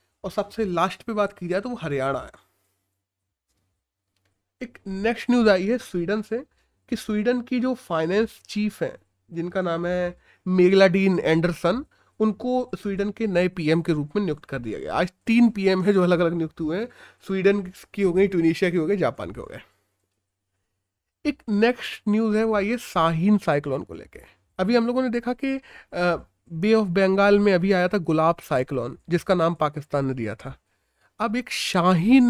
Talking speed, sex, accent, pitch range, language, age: 190 wpm, male, native, 150-215 Hz, Hindi, 30-49